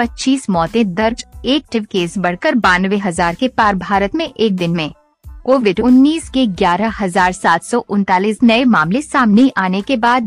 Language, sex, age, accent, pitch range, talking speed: Hindi, female, 50-69, native, 190-255 Hz, 140 wpm